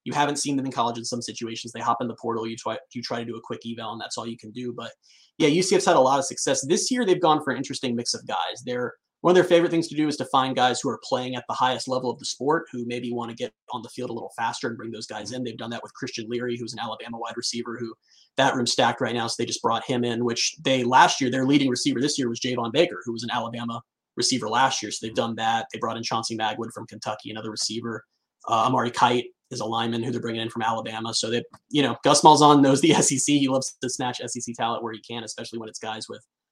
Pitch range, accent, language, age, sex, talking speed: 115-130 Hz, American, English, 30-49, male, 285 wpm